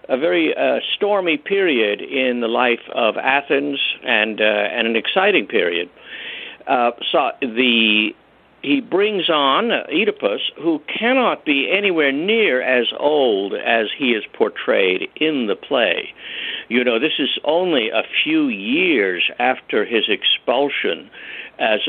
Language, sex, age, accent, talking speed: English, male, 60-79, American, 135 wpm